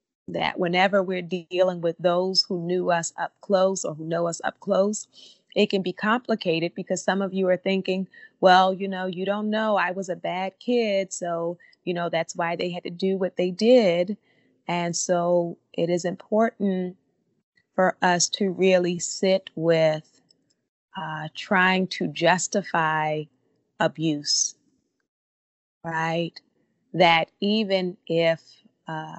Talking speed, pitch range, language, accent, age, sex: 145 wpm, 165-195 Hz, English, American, 30-49, female